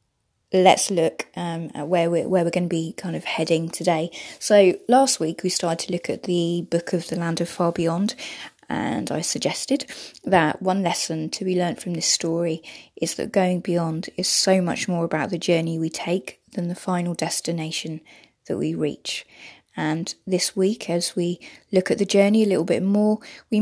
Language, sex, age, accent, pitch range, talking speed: English, female, 20-39, British, 165-190 Hz, 195 wpm